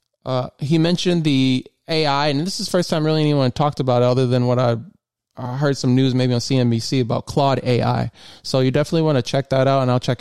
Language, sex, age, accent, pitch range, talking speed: English, male, 20-39, American, 125-150 Hz, 230 wpm